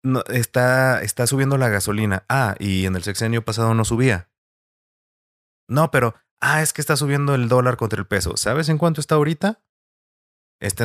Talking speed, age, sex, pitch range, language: 175 wpm, 30-49, male, 95-130 Hz, Spanish